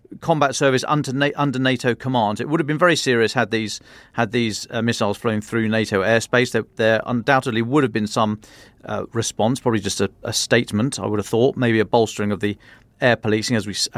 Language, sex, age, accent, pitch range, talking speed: English, male, 40-59, British, 110-135 Hz, 195 wpm